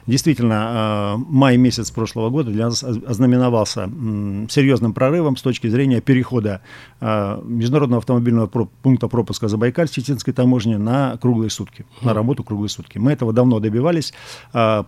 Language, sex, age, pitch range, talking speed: Russian, male, 50-69, 110-130 Hz, 135 wpm